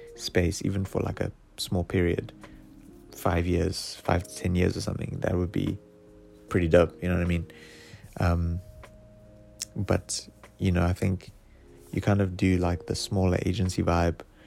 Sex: male